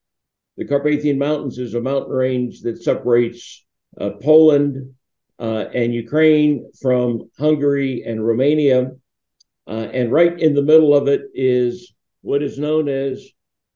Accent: American